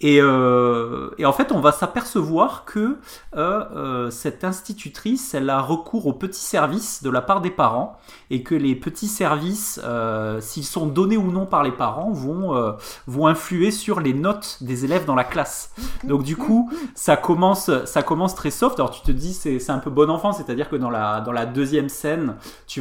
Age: 30-49